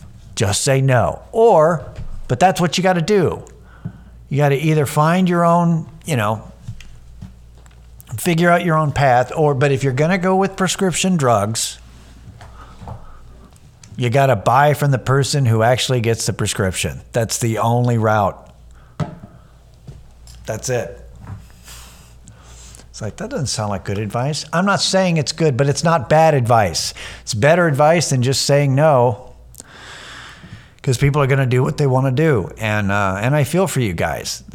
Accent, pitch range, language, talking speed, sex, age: American, 95-145 Hz, English, 165 wpm, male, 50-69